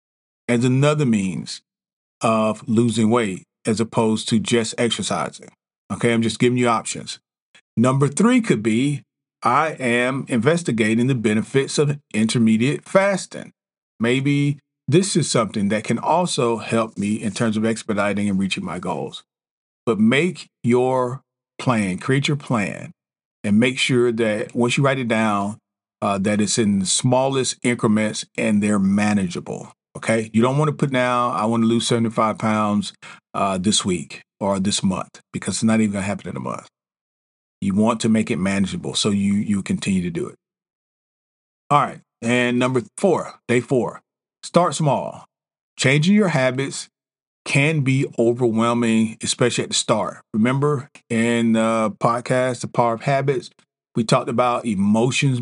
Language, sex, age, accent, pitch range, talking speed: English, male, 40-59, American, 110-135 Hz, 155 wpm